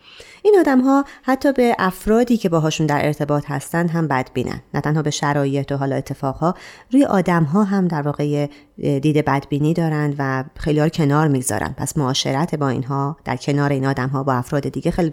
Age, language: 30-49, Persian